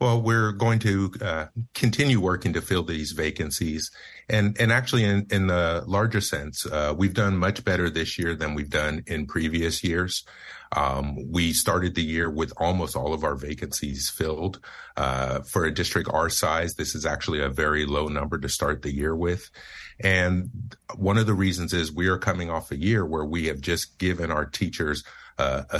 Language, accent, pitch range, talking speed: English, American, 75-100 Hz, 190 wpm